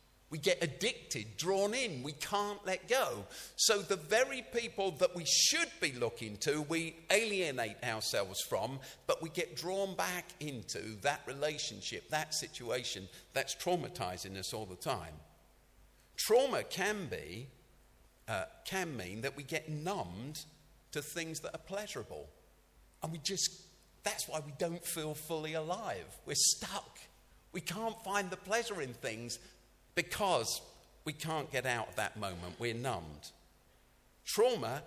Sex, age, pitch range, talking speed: male, 50-69, 115-180 Hz, 145 wpm